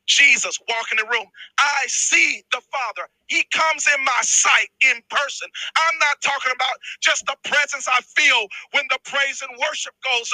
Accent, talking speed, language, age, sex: American, 180 wpm, English, 40-59, male